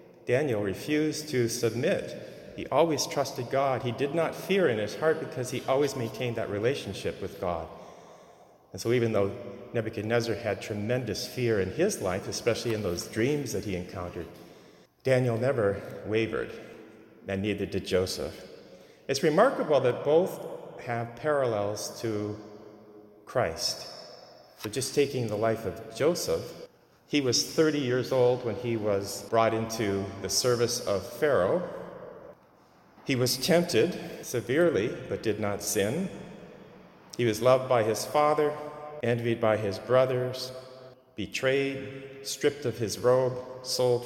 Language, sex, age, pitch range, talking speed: English, male, 40-59, 105-135 Hz, 140 wpm